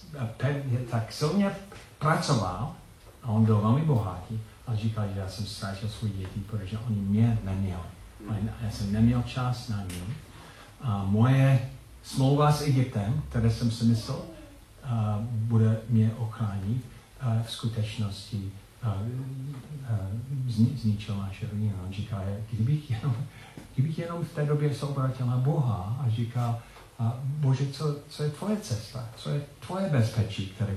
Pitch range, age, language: 110-130 Hz, 50-69, Czech